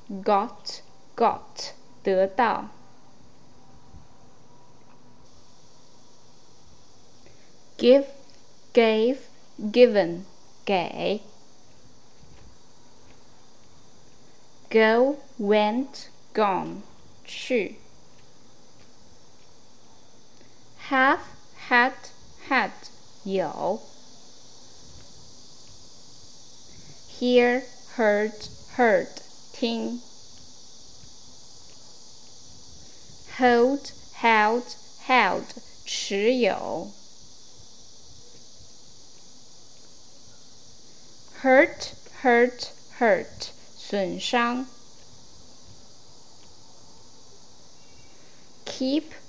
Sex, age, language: female, 20-39, Chinese